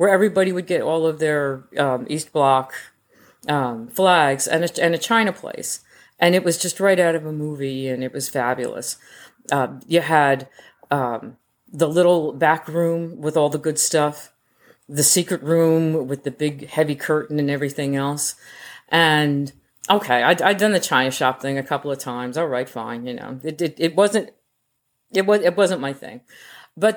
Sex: female